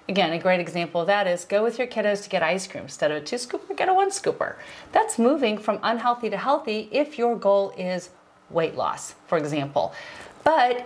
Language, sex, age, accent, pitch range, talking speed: English, female, 40-59, American, 185-230 Hz, 215 wpm